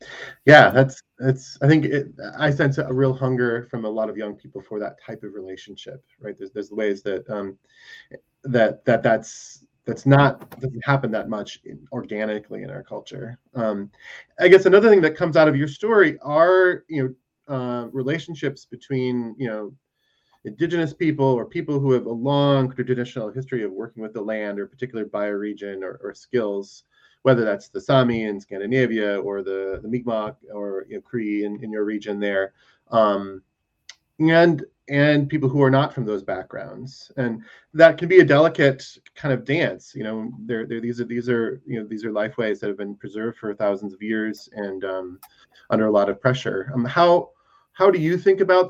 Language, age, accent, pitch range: English, 20-39, American, 105-140 Hz